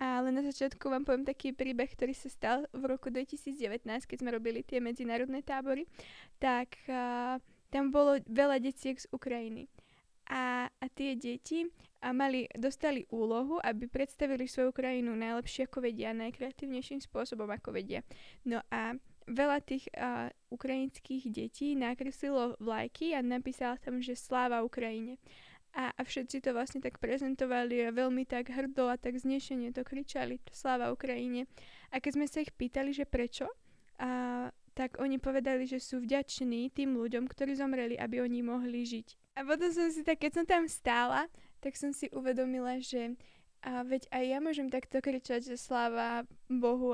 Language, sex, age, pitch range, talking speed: Slovak, female, 20-39, 245-270 Hz, 160 wpm